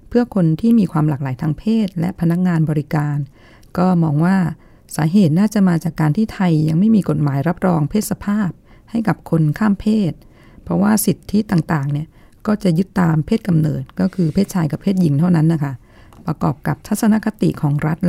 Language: Thai